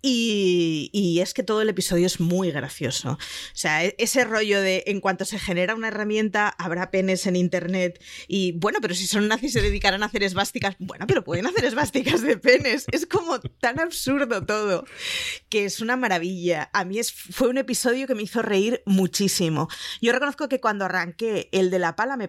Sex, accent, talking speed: female, Spanish, 195 wpm